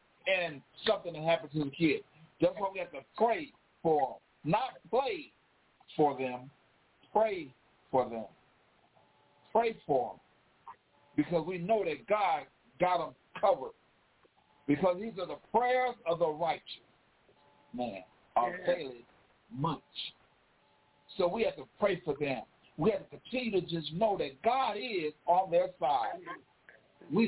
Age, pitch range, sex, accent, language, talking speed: 50-69, 165-235 Hz, male, American, English, 145 wpm